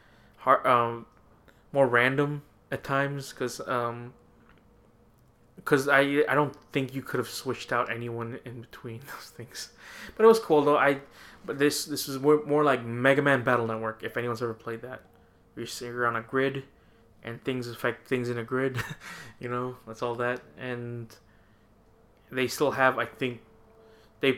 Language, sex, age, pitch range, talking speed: English, male, 20-39, 115-135 Hz, 165 wpm